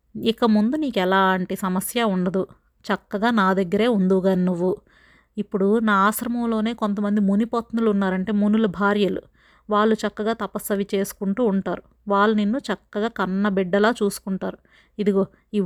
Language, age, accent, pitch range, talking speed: Telugu, 30-49, native, 195-225 Hz, 125 wpm